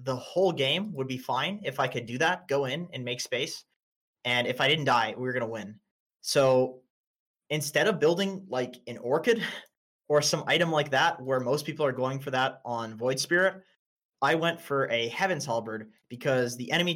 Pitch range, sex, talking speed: 125-165 Hz, male, 200 wpm